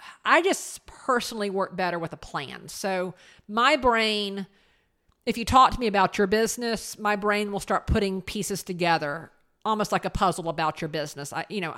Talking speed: 185 wpm